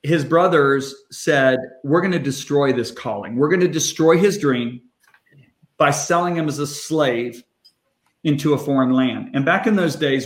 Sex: male